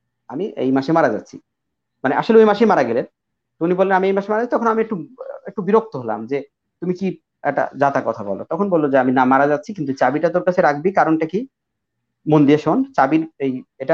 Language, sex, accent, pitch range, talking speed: Bengali, male, native, 140-210 Hz, 140 wpm